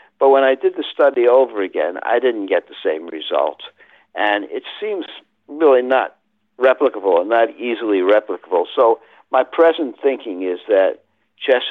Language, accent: English, American